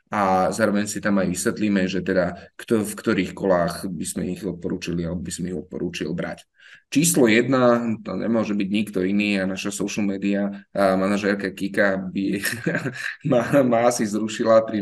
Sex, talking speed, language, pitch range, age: male, 170 wpm, Slovak, 95-105 Hz, 20-39